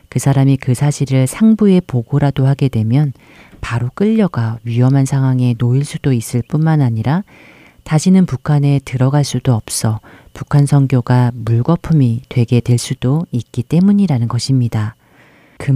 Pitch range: 120-155 Hz